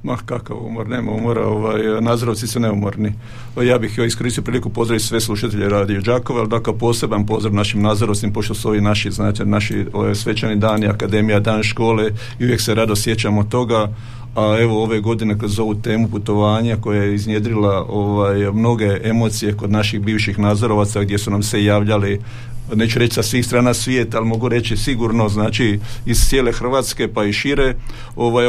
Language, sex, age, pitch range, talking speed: Croatian, male, 50-69, 105-120 Hz, 175 wpm